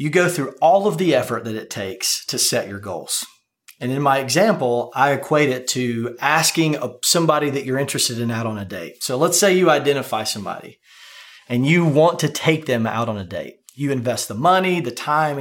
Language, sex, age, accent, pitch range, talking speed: English, male, 30-49, American, 120-170 Hz, 210 wpm